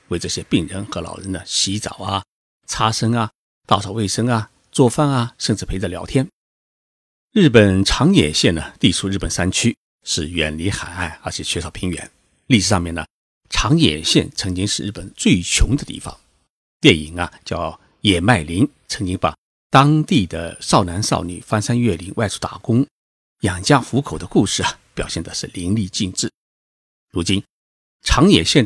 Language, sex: Chinese, male